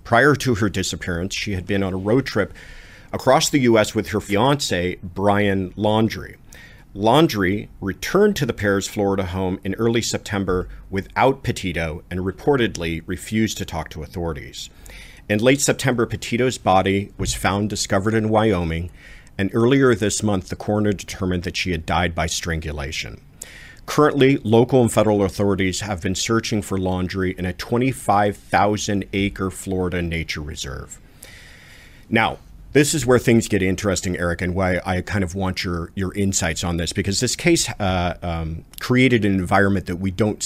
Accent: American